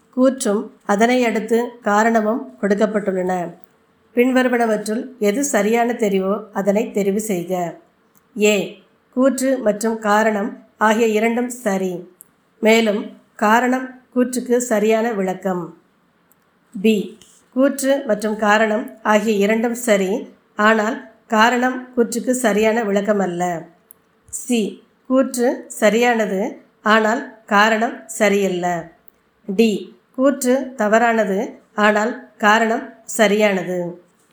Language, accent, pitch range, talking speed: Tamil, native, 205-240 Hz, 85 wpm